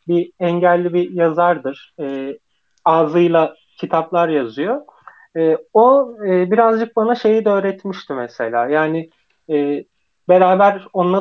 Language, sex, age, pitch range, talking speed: Turkish, male, 30-49, 170-200 Hz, 110 wpm